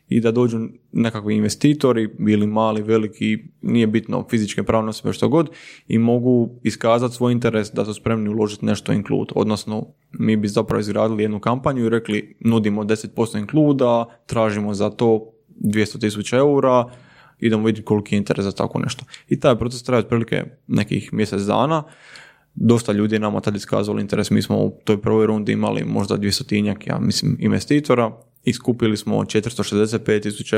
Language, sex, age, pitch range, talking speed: Croatian, male, 20-39, 105-120 Hz, 165 wpm